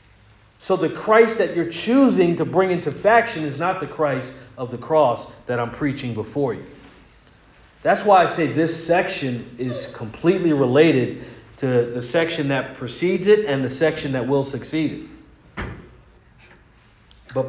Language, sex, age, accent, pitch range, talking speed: English, male, 40-59, American, 120-155 Hz, 155 wpm